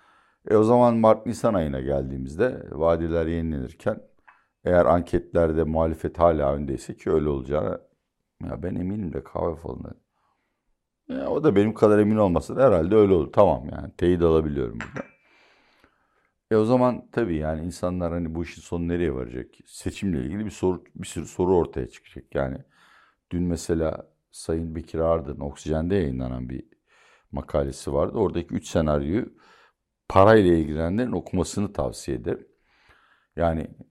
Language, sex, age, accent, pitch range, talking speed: Turkish, male, 60-79, native, 80-95 Hz, 140 wpm